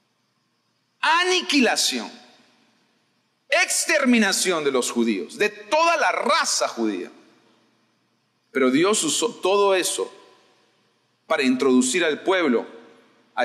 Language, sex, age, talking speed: Spanish, male, 40-59, 90 wpm